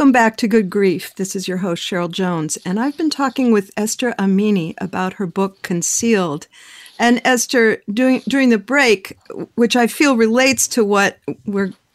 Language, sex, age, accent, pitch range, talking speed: English, female, 50-69, American, 195-245 Hz, 175 wpm